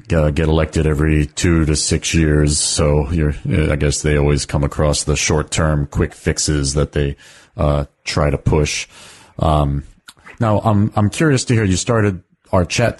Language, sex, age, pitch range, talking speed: English, male, 30-49, 75-90 Hz, 180 wpm